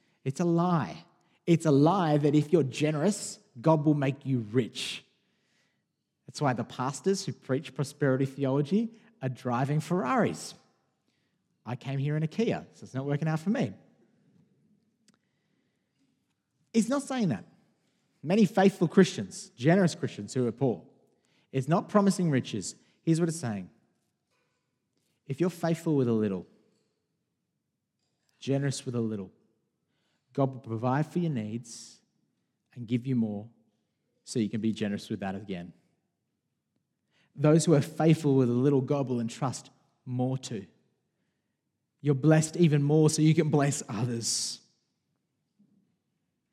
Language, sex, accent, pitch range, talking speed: English, male, Australian, 115-165 Hz, 140 wpm